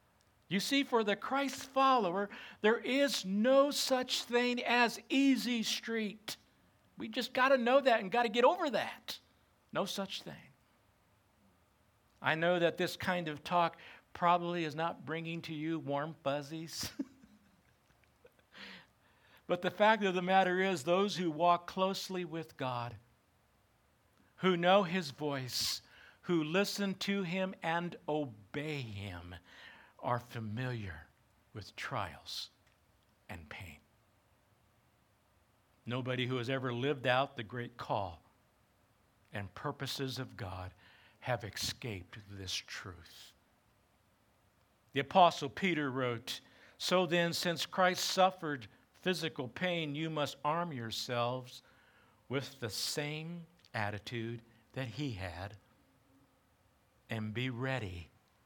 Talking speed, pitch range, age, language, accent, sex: 120 wpm, 110-185 Hz, 60-79, English, American, male